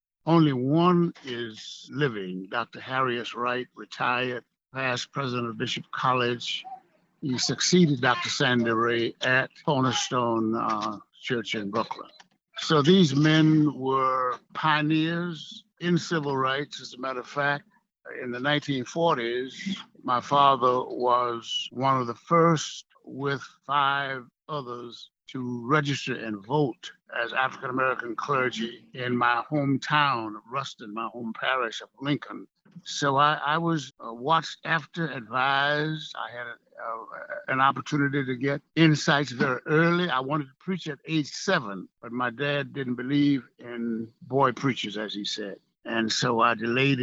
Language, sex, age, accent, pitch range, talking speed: English, male, 60-79, American, 120-150 Hz, 135 wpm